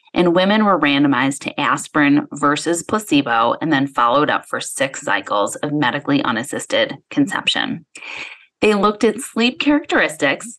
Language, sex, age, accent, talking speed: English, female, 30-49, American, 135 wpm